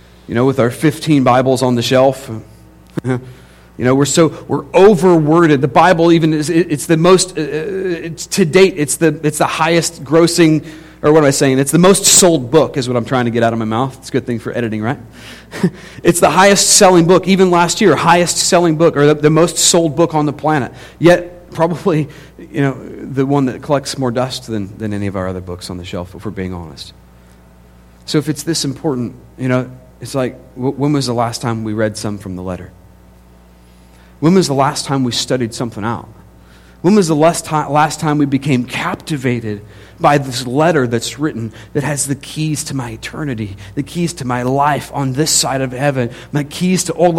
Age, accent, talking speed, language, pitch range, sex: 40-59, American, 215 wpm, English, 120-165 Hz, male